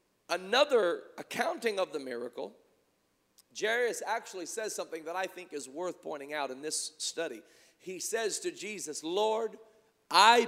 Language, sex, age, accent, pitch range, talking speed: English, male, 40-59, American, 190-250 Hz, 145 wpm